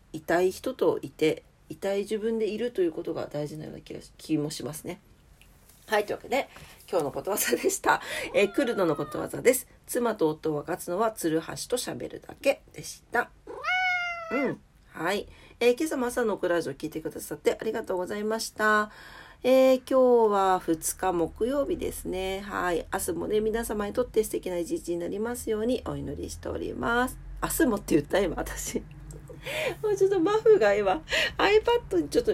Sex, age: female, 40-59